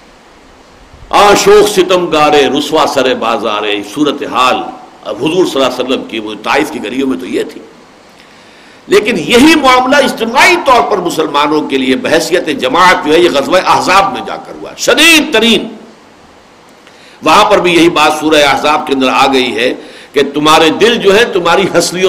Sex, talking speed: male, 150 wpm